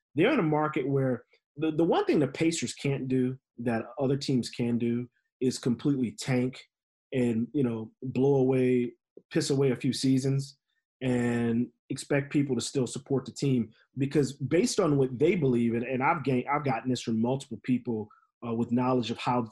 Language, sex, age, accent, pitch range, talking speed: English, male, 30-49, American, 120-140 Hz, 185 wpm